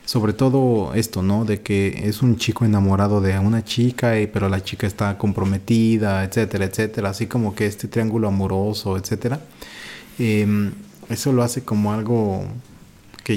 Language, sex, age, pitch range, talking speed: Spanish, male, 30-49, 100-115 Hz, 155 wpm